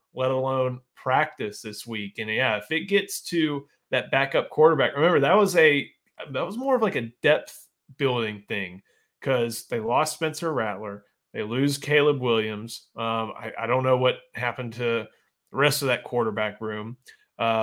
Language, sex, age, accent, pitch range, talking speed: English, male, 30-49, American, 115-145 Hz, 175 wpm